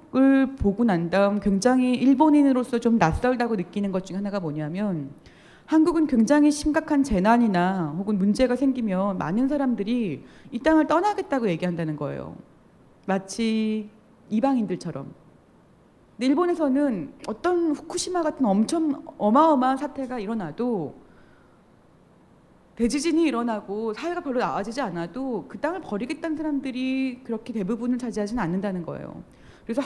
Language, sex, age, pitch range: Korean, female, 30-49, 205-280 Hz